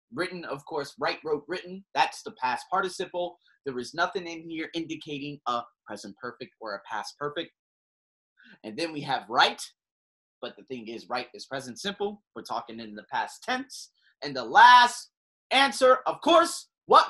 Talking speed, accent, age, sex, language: 170 wpm, American, 30-49, male, English